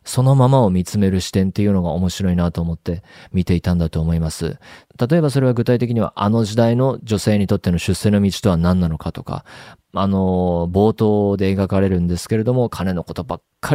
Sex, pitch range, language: male, 90-120 Hz, Japanese